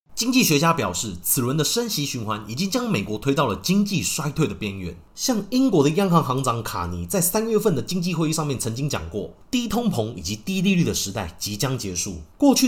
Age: 30-49